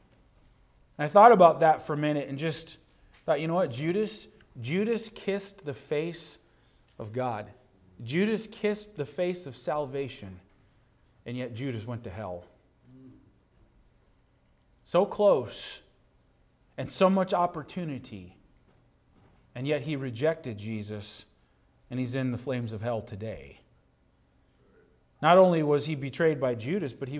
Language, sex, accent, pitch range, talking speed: English, male, American, 125-170 Hz, 130 wpm